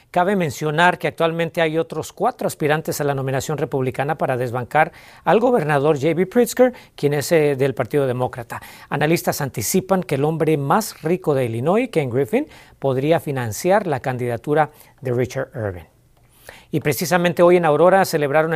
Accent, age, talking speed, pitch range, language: Mexican, 40-59, 150 wpm, 135-175 Hz, Spanish